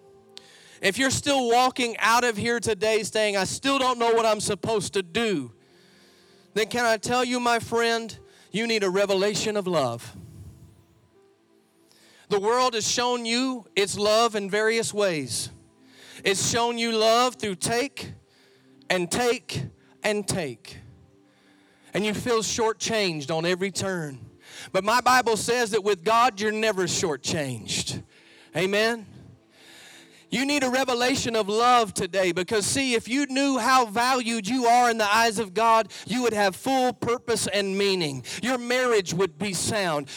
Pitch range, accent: 195-245 Hz, American